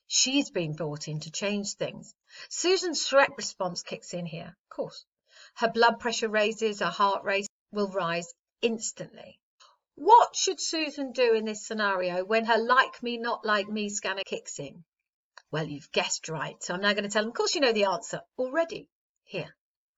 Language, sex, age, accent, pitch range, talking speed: English, female, 40-59, British, 180-240 Hz, 185 wpm